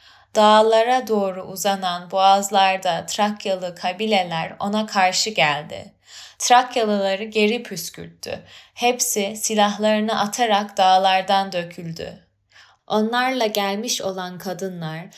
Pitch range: 175-215 Hz